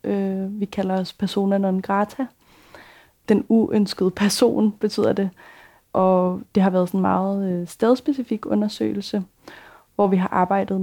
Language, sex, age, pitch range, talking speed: Danish, female, 20-39, 185-210 Hz, 135 wpm